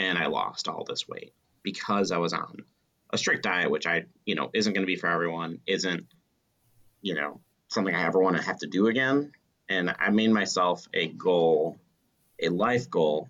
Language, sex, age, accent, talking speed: English, male, 30-49, American, 200 wpm